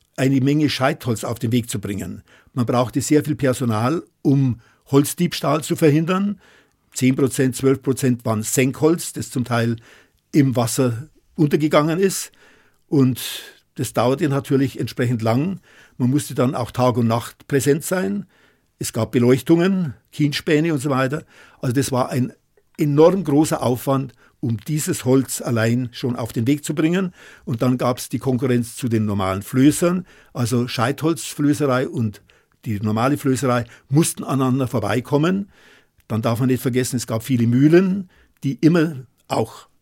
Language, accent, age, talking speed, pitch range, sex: German, German, 50-69, 150 wpm, 125-150 Hz, male